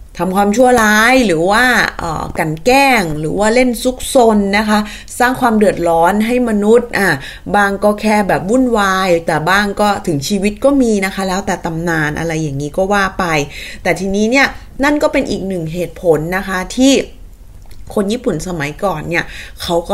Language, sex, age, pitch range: Thai, female, 20-39, 175-220 Hz